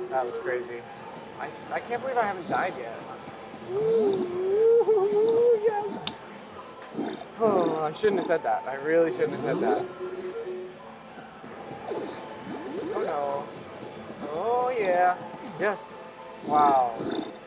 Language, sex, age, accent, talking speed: English, male, 30-49, American, 105 wpm